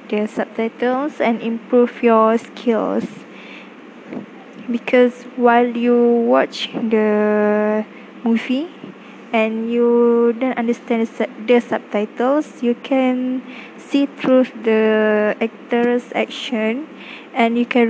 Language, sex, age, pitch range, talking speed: English, female, 20-39, 225-250 Hz, 100 wpm